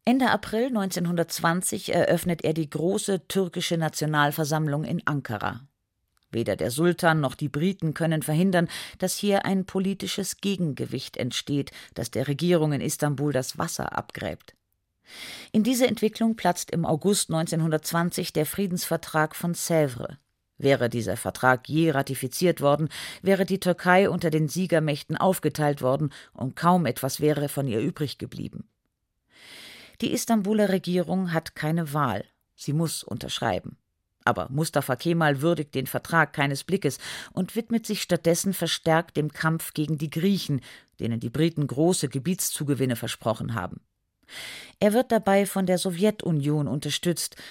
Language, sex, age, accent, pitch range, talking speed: German, female, 50-69, German, 140-180 Hz, 135 wpm